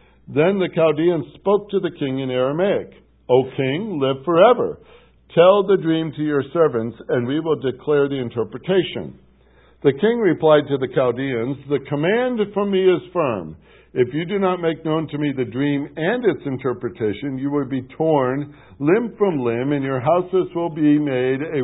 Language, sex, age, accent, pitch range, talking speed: English, male, 60-79, American, 125-175 Hz, 175 wpm